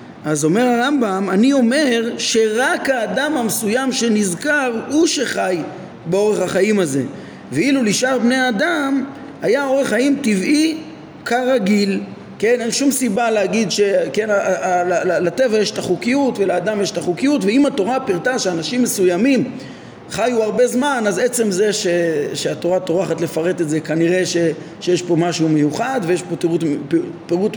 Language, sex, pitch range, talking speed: Hebrew, male, 170-250 Hz, 140 wpm